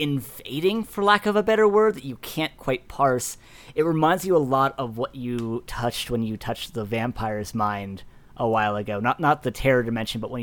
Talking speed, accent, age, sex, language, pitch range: 215 wpm, American, 20-39, male, English, 115-135 Hz